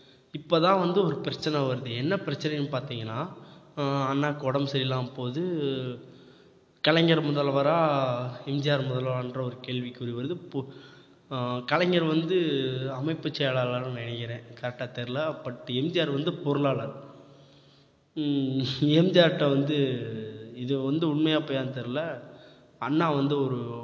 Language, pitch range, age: Tamil, 125-145 Hz, 20-39